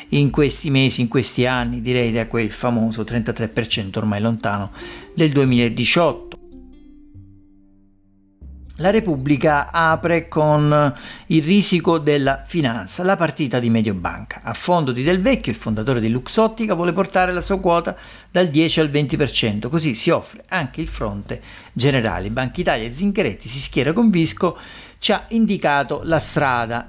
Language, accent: Italian, native